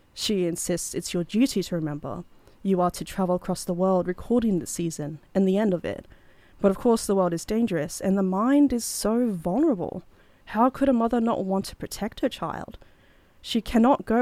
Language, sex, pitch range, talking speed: English, female, 180-230 Hz, 205 wpm